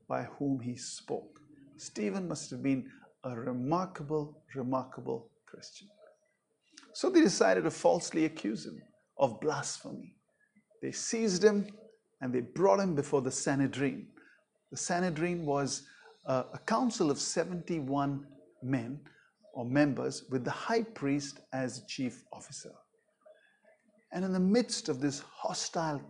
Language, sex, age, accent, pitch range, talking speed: English, male, 50-69, Indian, 135-200 Hz, 130 wpm